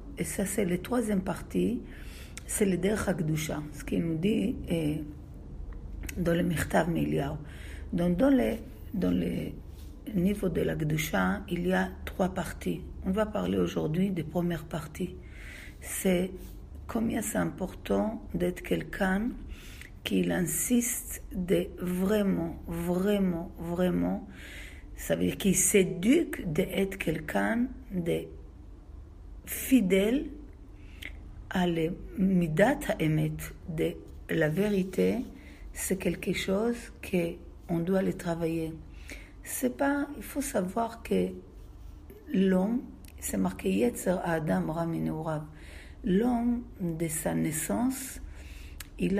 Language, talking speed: French, 110 wpm